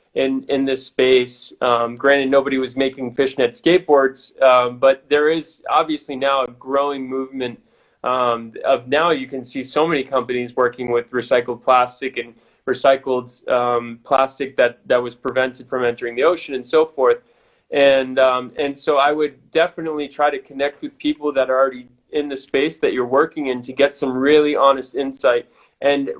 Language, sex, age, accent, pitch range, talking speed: English, male, 20-39, American, 130-150 Hz, 175 wpm